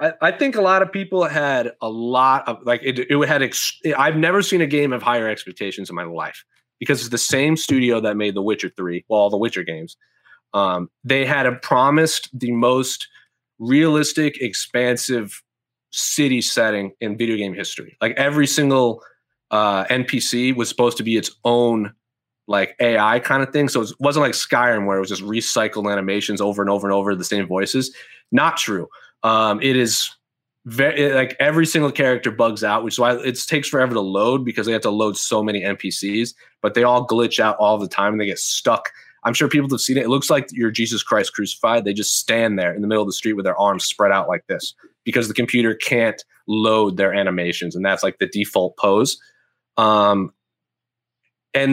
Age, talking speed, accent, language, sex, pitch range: 30-49, 200 wpm, American, English, male, 105-130 Hz